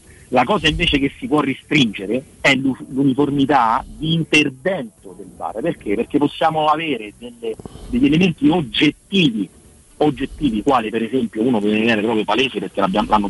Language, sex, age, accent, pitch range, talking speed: Italian, male, 50-69, native, 115-165 Hz, 145 wpm